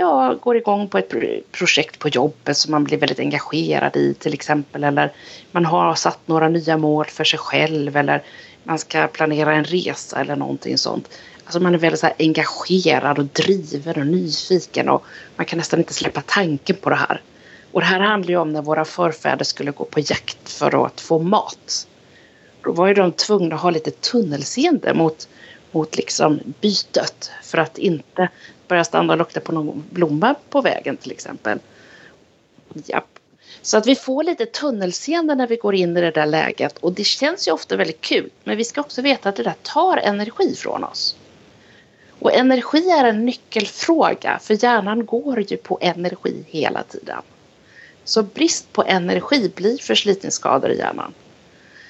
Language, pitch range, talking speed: Swedish, 160-230 Hz, 180 wpm